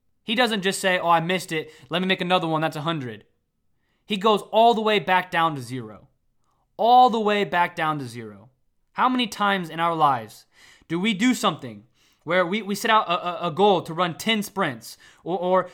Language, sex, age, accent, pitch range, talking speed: English, male, 20-39, American, 170-225 Hz, 215 wpm